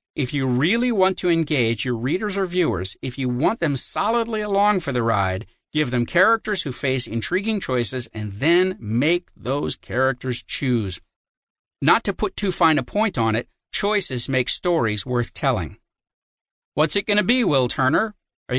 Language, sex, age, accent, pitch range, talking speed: English, male, 50-69, American, 125-185 Hz, 175 wpm